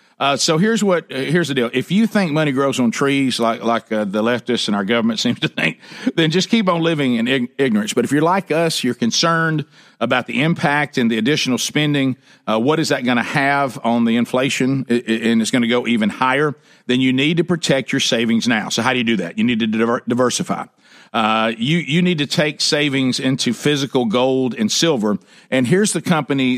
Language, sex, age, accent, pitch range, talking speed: English, male, 50-69, American, 120-160 Hz, 230 wpm